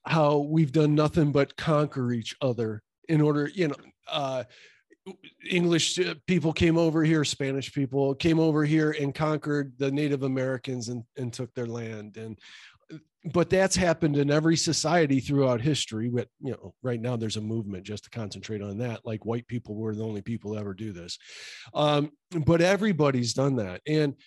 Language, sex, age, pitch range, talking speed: English, male, 40-59, 130-160 Hz, 175 wpm